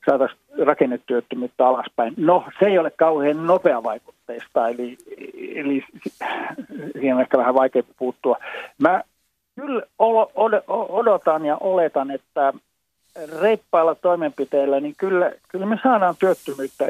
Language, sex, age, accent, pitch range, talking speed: Finnish, male, 50-69, native, 135-180 Hz, 115 wpm